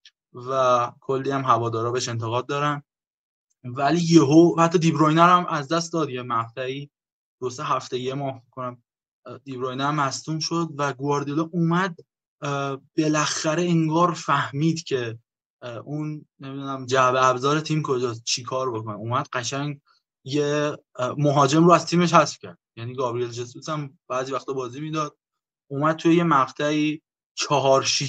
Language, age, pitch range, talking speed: Persian, 20-39, 130-165 Hz, 130 wpm